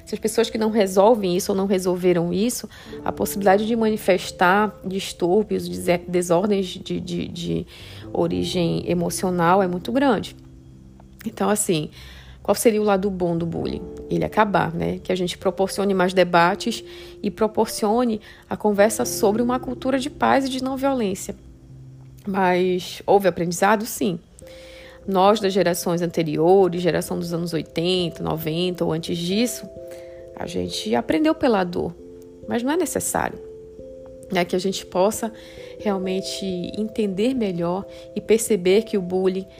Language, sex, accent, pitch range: Portuguese, female, Brazilian, 170-215 Hz